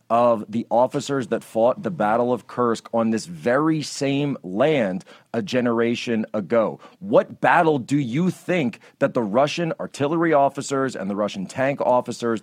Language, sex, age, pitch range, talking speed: English, male, 40-59, 105-130 Hz, 155 wpm